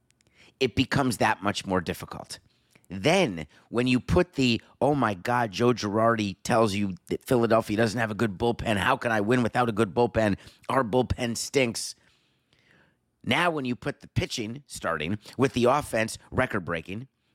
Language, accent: English, American